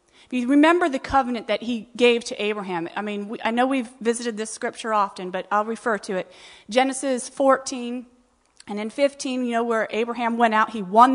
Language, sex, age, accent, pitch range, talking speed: English, female, 30-49, American, 225-285 Hz, 205 wpm